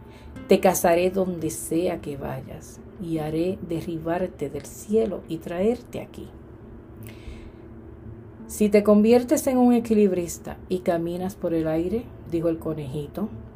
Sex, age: female, 50-69